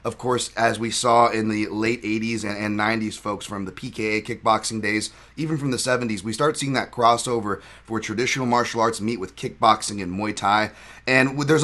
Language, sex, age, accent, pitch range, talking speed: English, male, 30-49, American, 110-130 Hz, 195 wpm